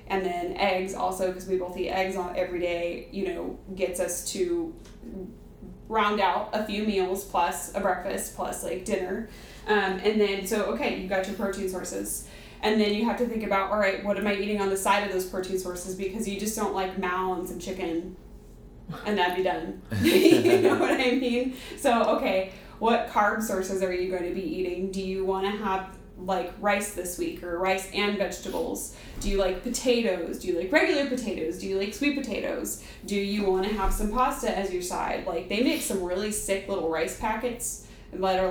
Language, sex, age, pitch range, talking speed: English, female, 20-39, 180-210 Hz, 210 wpm